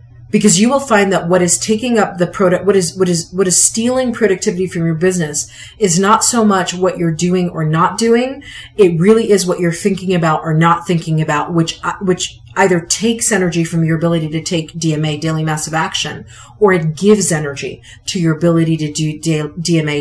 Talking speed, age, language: 200 wpm, 30-49, English